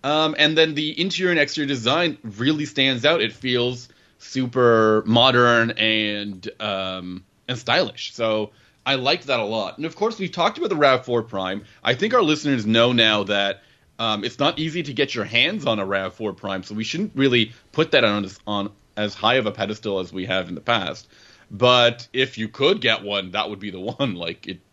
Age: 30-49